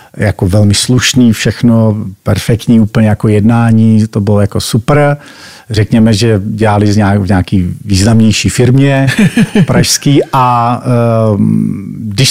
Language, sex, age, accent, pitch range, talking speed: Czech, male, 50-69, native, 110-135 Hz, 105 wpm